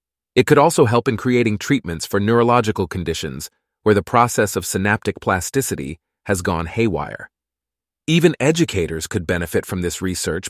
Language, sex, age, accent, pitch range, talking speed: English, male, 30-49, American, 100-130 Hz, 150 wpm